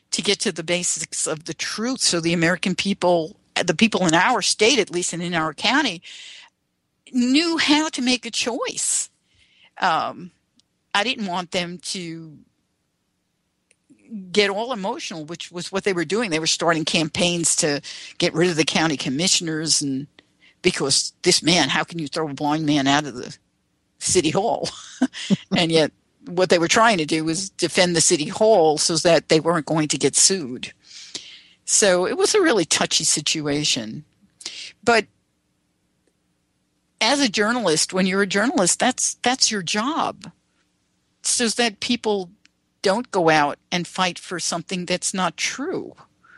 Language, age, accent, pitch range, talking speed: English, 50-69, American, 160-220 Hz, 160 wpm